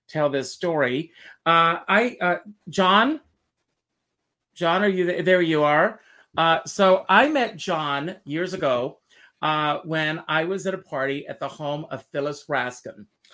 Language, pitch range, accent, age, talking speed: English, 145-190 Hz, American, 50-69, 155 wpm